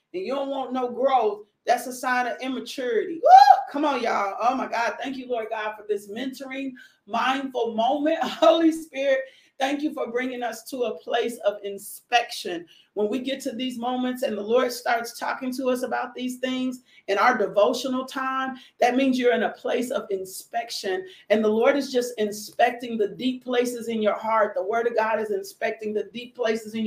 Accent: American